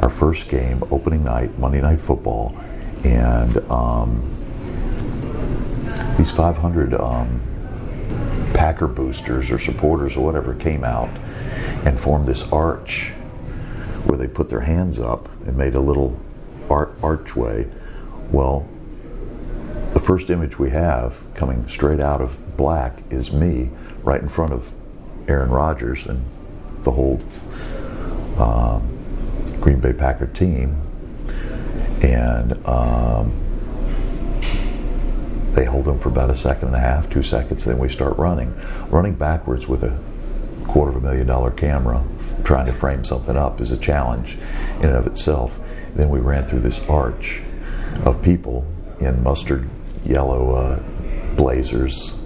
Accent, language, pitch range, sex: American, English, 65-80 Hz, male